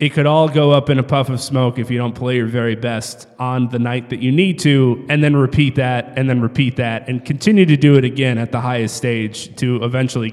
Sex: male